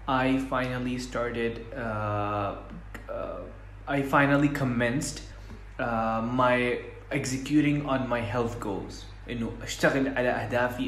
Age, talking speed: 20-39, 105 wpm